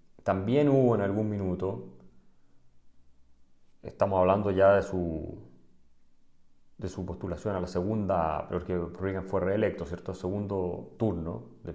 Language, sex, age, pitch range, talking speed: Spanish, male, 40-59, 90-110 Hz, 130 wpm